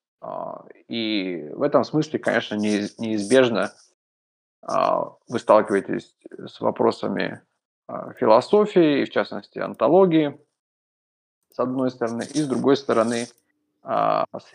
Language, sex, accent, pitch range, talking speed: Russian, male, native, 105-135 Hz, 95 wpm